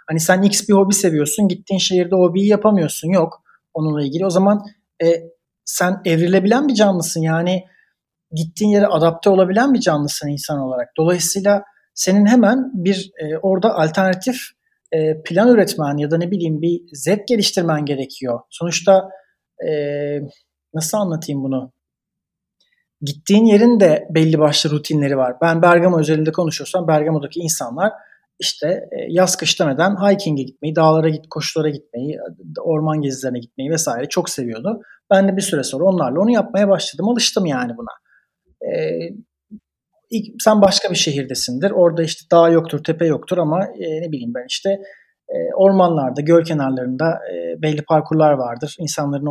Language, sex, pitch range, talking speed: Turkish, male, 150-195 Hz, 140 wpm